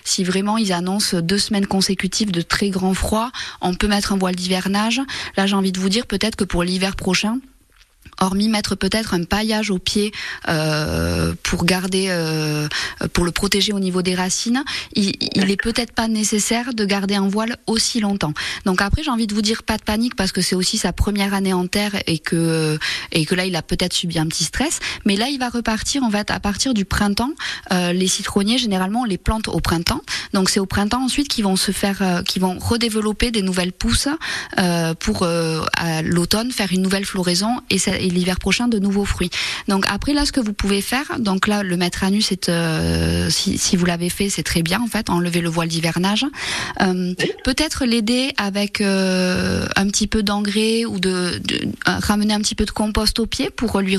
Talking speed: 215 wpm